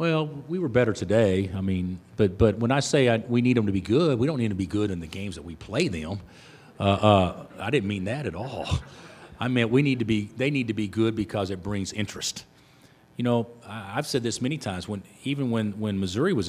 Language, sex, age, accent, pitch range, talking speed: English, male, 40-59, American, 100-130 Hz, 250 wpm